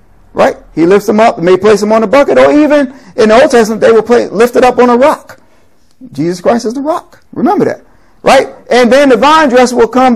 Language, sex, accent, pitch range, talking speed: English, male, American, 180-240 Hz, 250 wpm